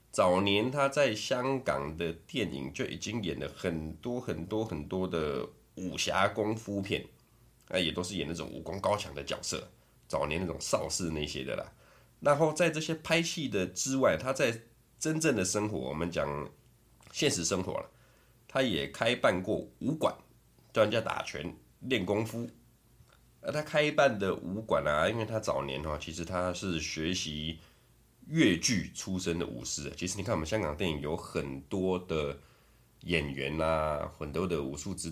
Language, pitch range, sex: Chinese, 75-100 Hz, male